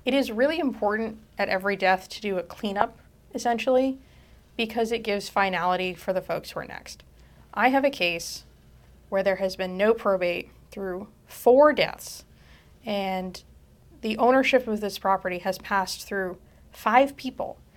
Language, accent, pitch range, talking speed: English, American, 190-235 Hz, 155 wpm